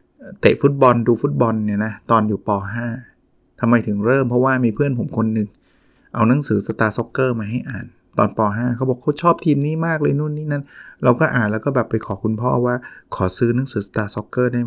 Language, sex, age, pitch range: Thai, male, 20-39, 110-130 Hz